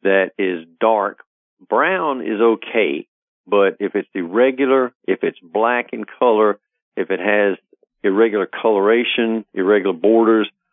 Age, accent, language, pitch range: 50-69, American, English, 95-115 Hz